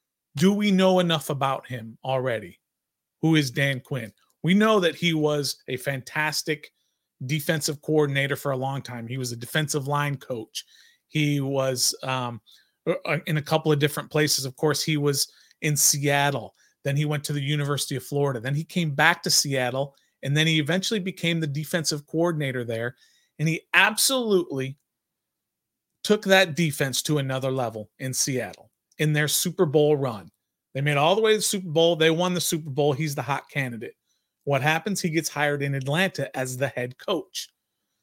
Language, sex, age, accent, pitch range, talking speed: English, male, 30-49, American, 135-170 Hz, 180 wpm